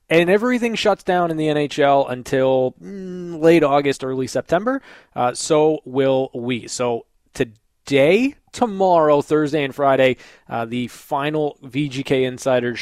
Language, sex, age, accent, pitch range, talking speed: English, male, 20-39, American, 120-155 Hz, 125 wpm